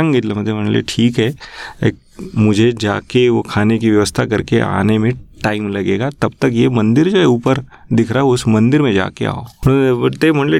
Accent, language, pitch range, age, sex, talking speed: native, Marathi, 115-135 Hz, 30-49, male, 155 wpm